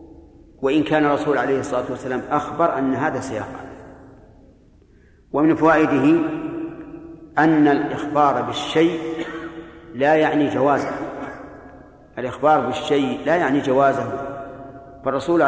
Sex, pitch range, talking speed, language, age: male, 135-160 Hz, 95 wpm, Arabic, 40-59